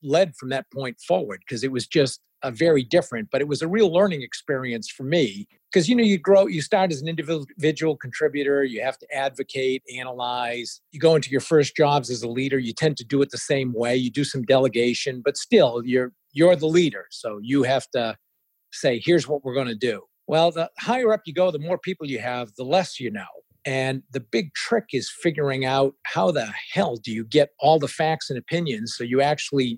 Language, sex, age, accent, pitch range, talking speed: English, male, 50-69, American, 125-160 Hz, 225 wpm